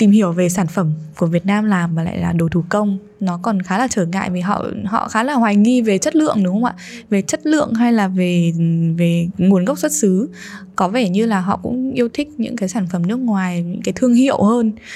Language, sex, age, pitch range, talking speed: Vietnamese, female, 10-29, 185-235 Hz, 255 wpm